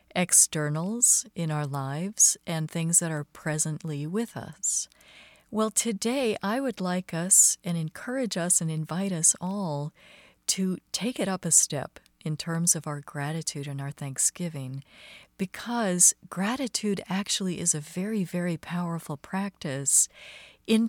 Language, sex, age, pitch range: English, female, 50-69, 155-200 Hz